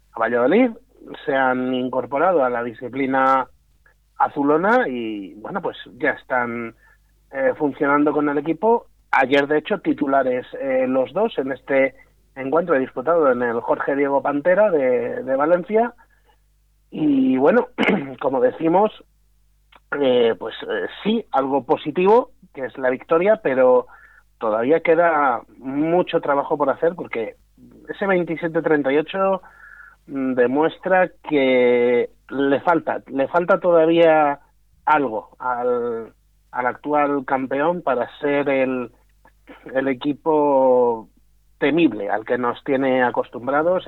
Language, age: Spanish, 30-49